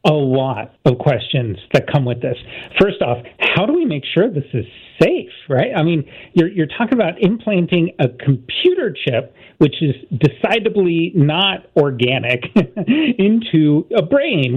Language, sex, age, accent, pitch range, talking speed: English, male, 40-59, American, 145-210 Hz, 150 wpm